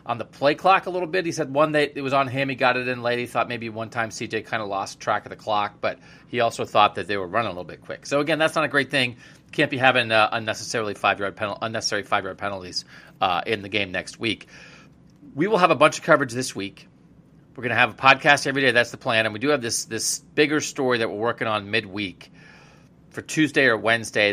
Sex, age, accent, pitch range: male, 40-59, American, 110-145 Hz